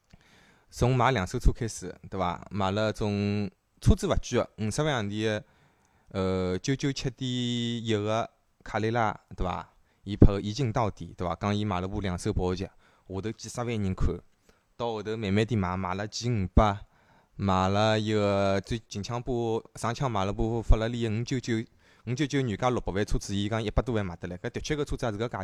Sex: male